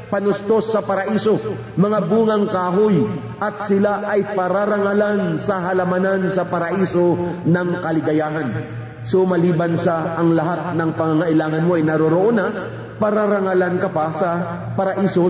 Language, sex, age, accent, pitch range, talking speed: Filipino, male, 50-69, native, 170-205 Hz, 125 wpm